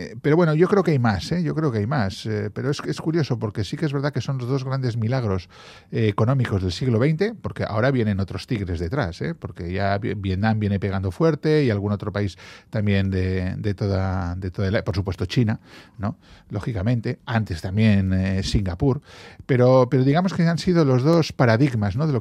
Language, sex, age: Spanish, male, 40-59